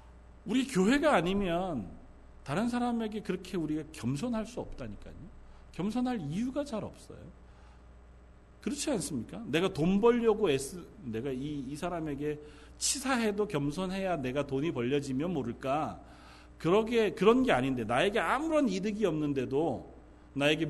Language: Korean